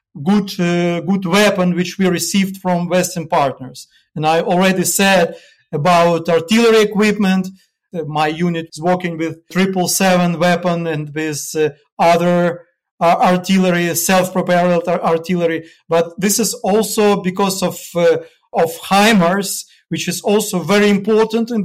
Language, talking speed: English, 140 wpm